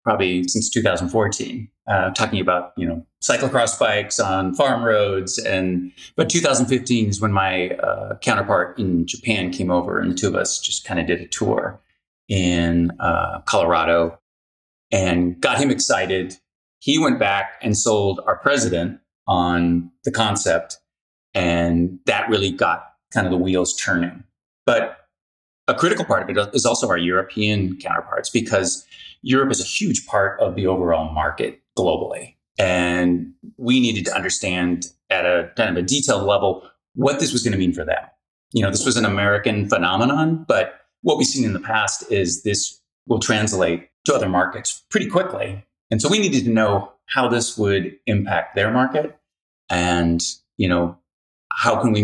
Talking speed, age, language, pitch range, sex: 165 wpm, 30-49, English, 90-110 Hz, male